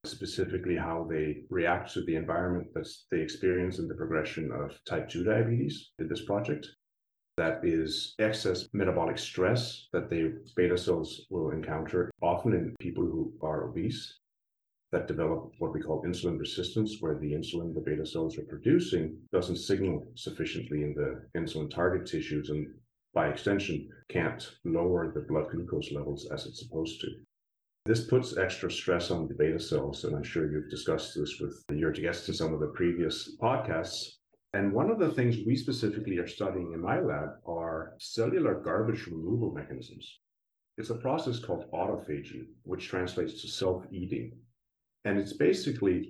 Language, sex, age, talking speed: English, male, 40-59, 165 wpm